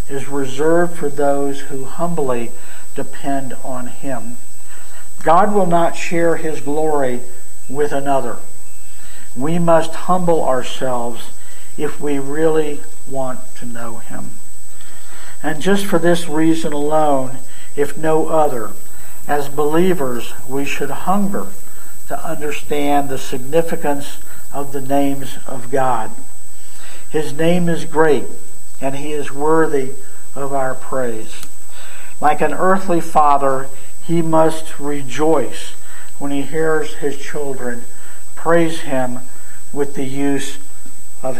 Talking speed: 115 wpm